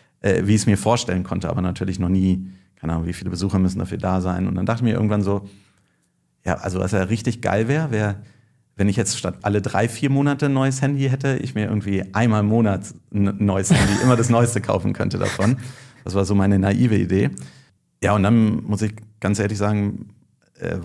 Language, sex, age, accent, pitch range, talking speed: German, male, 40-59, German, 95-115 Hz, 220 wpm